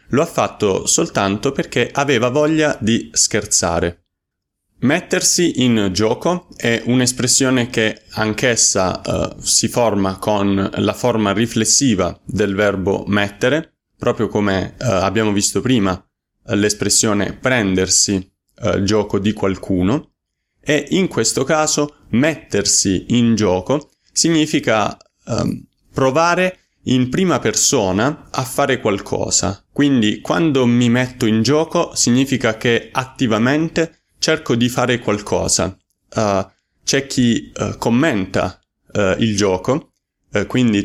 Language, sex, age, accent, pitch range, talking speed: Italian, male, 30-49, native, 100-130 Hz, 115 wpm